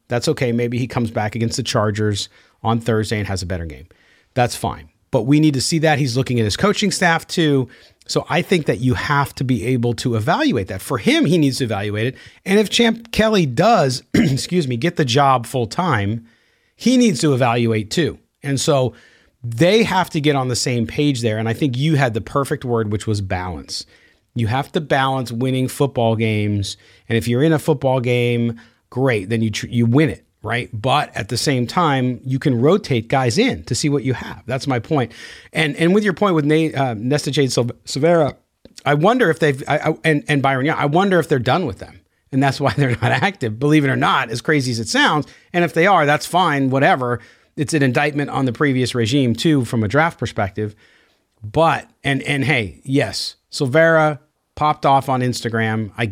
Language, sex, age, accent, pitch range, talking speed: English, male, 40-59, American, 115-150 Hz, 215 wpm